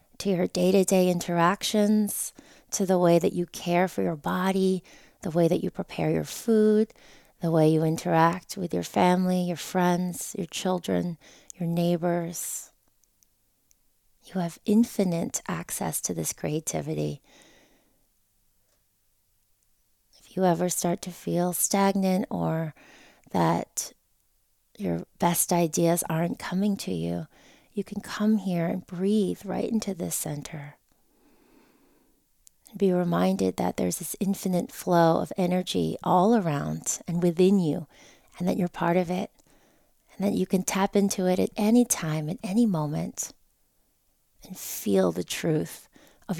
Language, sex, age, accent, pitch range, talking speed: English, female, 30-49, American, 155-195 Hz, 135 wpm